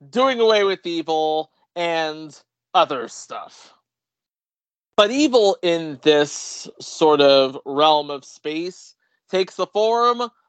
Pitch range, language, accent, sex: 155-220 Hz, English, American, male